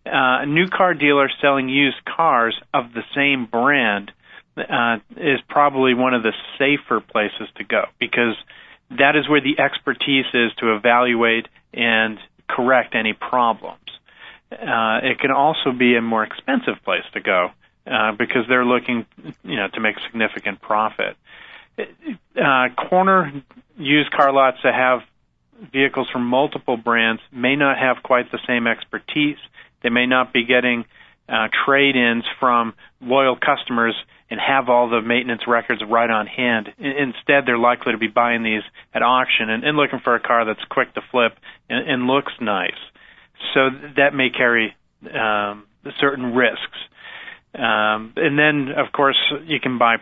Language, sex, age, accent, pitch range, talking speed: English, male, 40-59, American, 120-140 Hz, 155 wpm